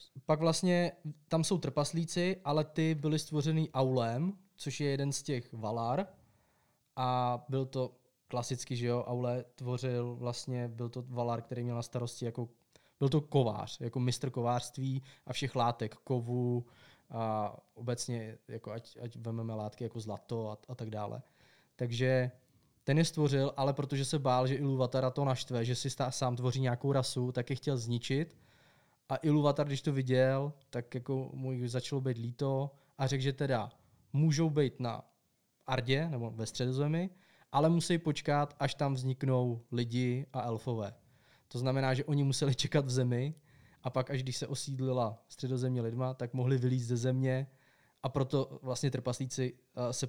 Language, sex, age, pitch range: Czech, male, 20-39, 120-140 Hz